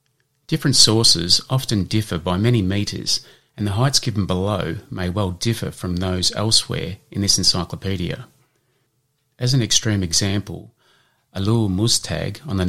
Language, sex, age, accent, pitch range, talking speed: English, male, 30-49, Australian, 90-125 Hz, 135 wpm